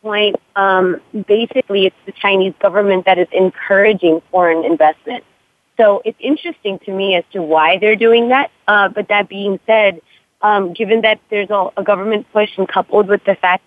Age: 30-49